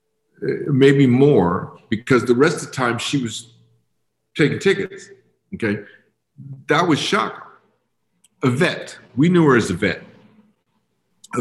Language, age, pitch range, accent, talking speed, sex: English, 50-69, 115-160 Hz, American, 130 wpm, male